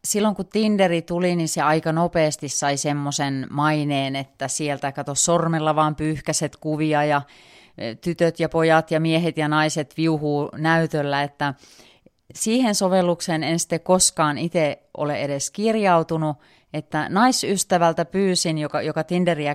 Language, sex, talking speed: Finnish, female, 135 wpm